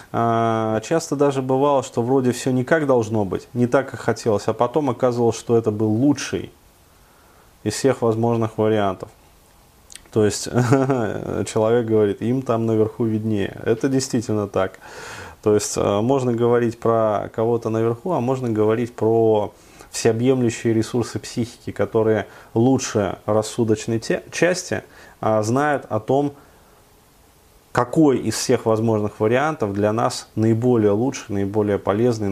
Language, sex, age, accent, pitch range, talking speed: Russian, male, 20-39, native, 110-130 Hz, 125 wpm